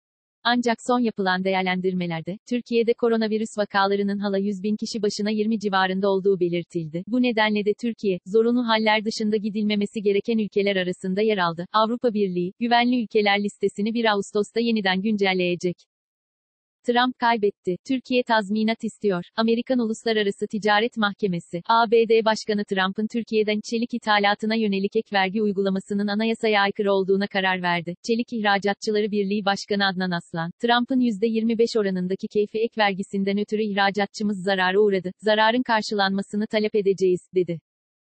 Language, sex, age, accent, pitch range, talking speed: Turkish, female, 40-59, native, 195-225 Hz, 130 wpm